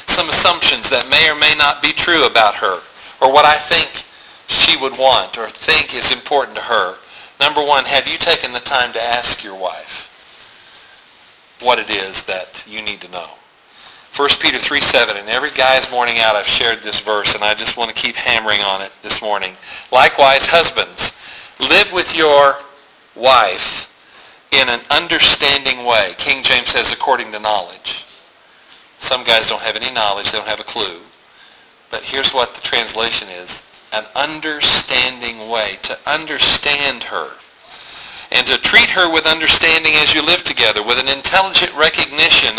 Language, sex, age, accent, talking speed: English, male, 50-69, American, 170 wpm